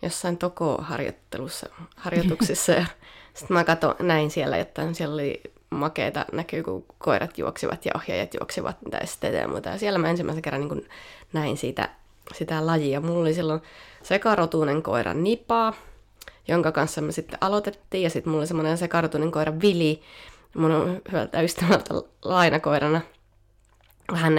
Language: Finnish